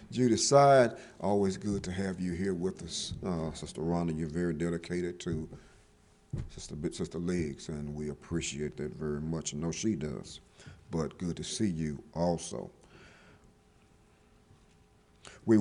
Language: English